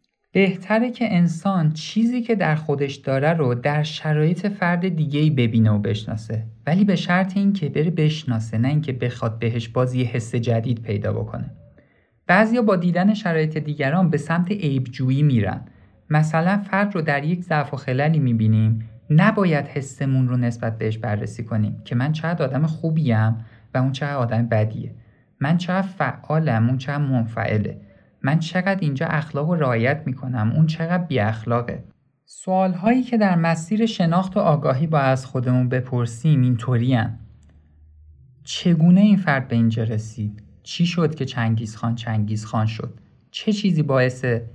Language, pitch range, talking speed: Persian, 115-160 Hz, 150 wpm